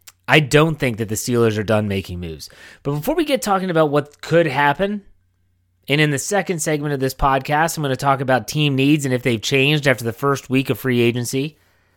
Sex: male